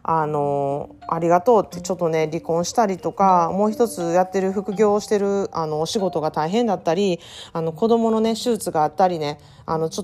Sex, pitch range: female, 155-220 Hz